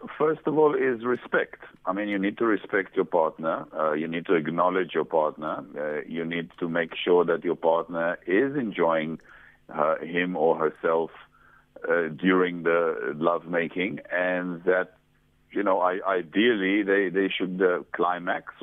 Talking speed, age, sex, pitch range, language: 165 wpm, 50-69, male, 85-120 Hz, English